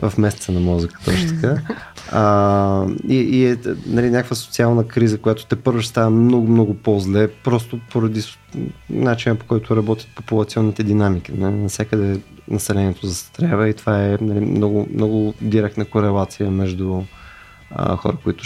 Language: Bulgarian